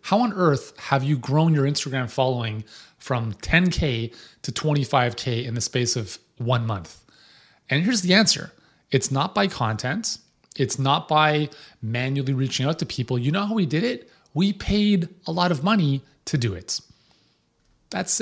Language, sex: English, male